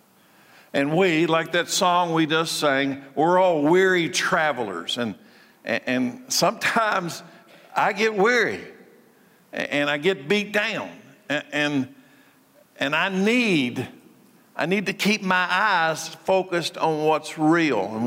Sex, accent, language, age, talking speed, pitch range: male, American, English, 50-69, 135 wpm, 155-195 Hz